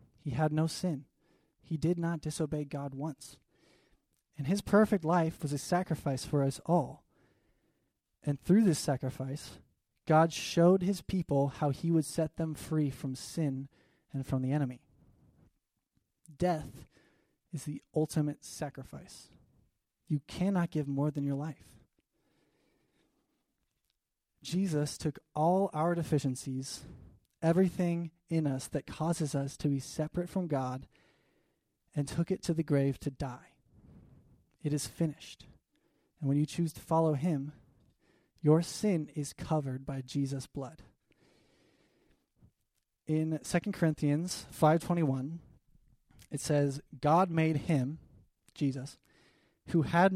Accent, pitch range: American, 140-165 Hz